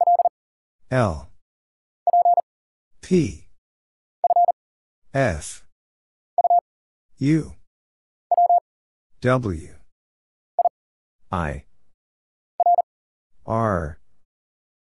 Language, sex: English, male